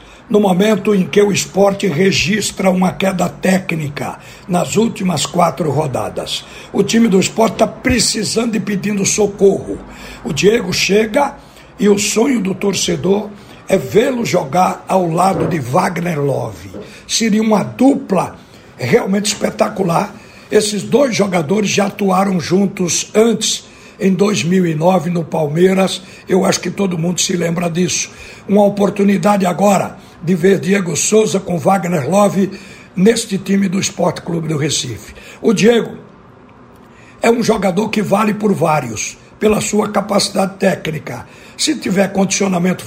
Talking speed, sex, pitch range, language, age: 135 wpm, male, 185-210 Hz, Portuguese, 60-79